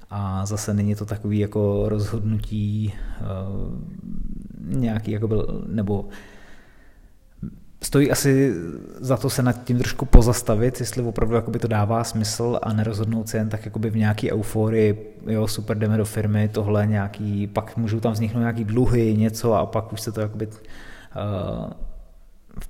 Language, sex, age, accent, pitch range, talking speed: Czech, male, 20-39, native, 105-120 Hz, 135 wpm